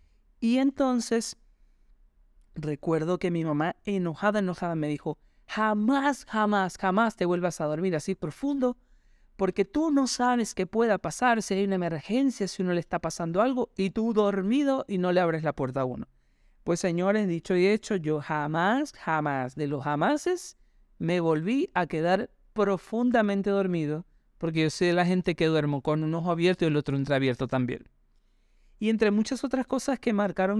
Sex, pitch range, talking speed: male, 155-210 Hz, 175 wpm